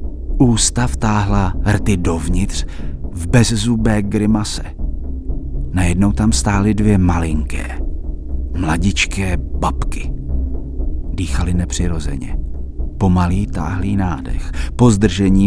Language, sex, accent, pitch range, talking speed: Czech, male, native, 70-105 Hz, 80 wpm